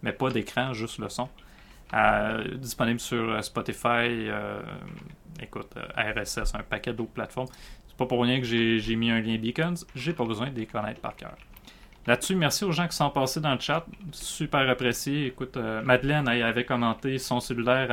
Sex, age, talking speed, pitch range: male, 30-49, 185 wpm, 115-130 Hz